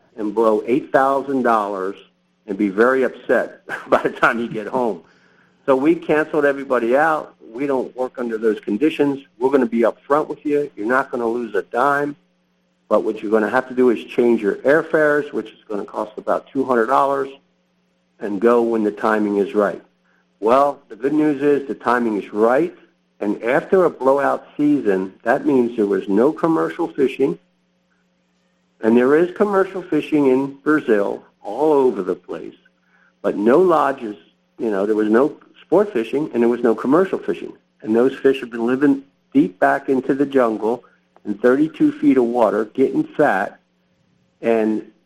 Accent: American